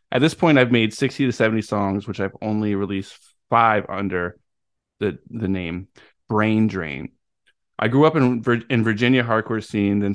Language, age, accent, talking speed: English, 20-39, American, 170 wpm